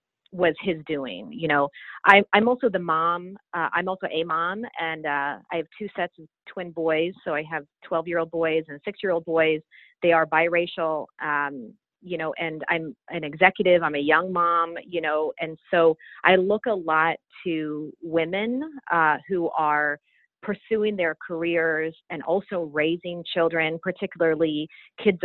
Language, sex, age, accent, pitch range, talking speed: English, female, 30-49, American, 155-185 Hz, 170 wpm